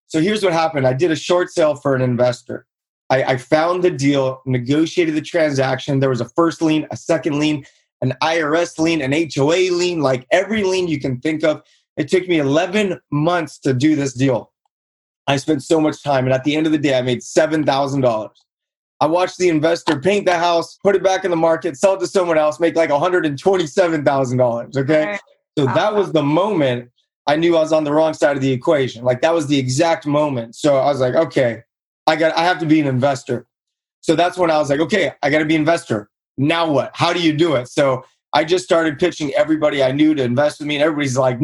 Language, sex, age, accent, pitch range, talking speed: English, male, 20-39, American, 135-175 Hz, 225 wpm